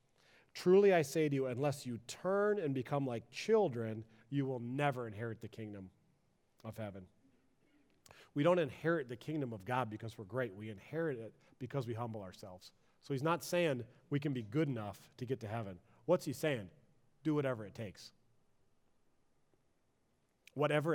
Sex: male